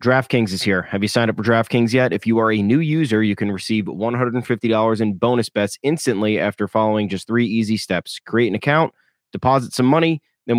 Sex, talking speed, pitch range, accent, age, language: male, 210 wpm, 105-125 Hz, American, 20-39, English